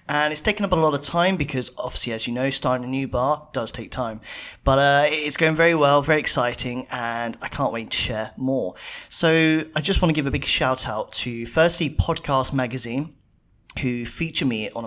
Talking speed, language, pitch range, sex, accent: 215 wpm, English, 120-160 Hz, male, British